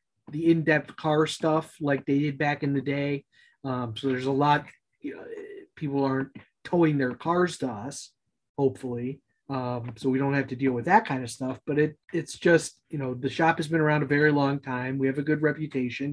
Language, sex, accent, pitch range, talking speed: English, male, American, 140-170 Hz, 215 wpm